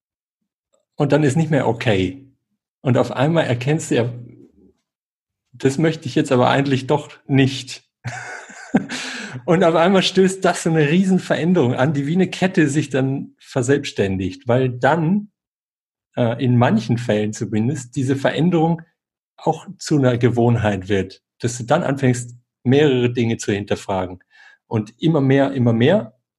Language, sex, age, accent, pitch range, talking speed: German, male, 50-69, German, 115-150 Hz, 145 wpm